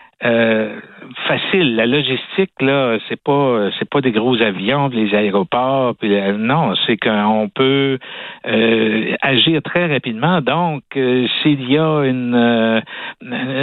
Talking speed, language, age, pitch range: 135 wpm, French, 60-79, 115-145 Hz